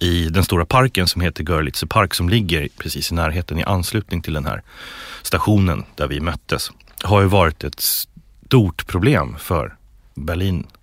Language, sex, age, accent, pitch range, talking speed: English, male, 30-49, Swedish, 80-105 Hz, 165 wpm